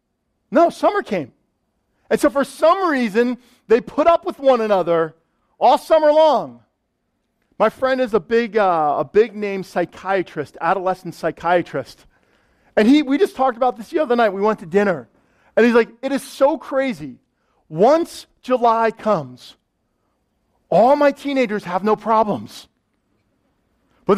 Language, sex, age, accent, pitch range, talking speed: English, male, 40-59, American, 190-265 Hz, 145 wpm